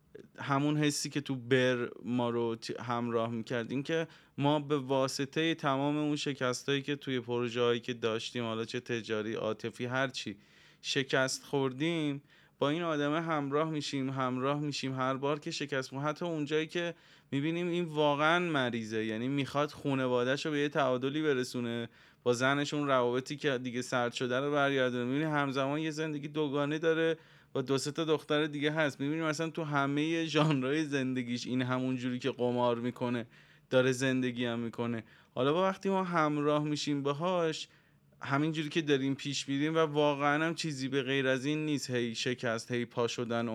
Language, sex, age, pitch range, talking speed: Persian, male, 30-49, 120-150 Hz, 160 wpm